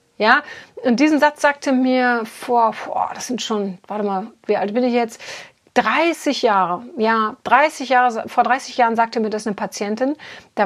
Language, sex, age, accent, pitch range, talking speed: German, female, 40-59, German, 205-255 Hz, 180 wpm